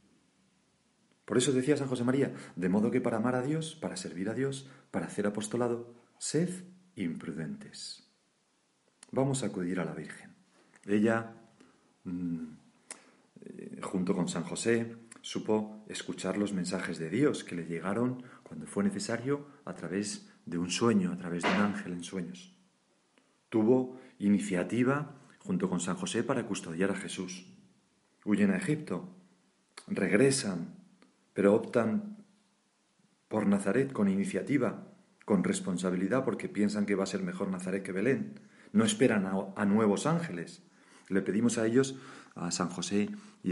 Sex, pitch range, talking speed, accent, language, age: male, 100-150 Hz, 140 wpm, Spanish, Spanish, 40-59